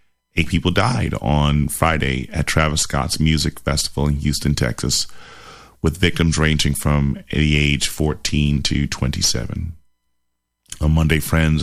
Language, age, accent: English, 30-49, American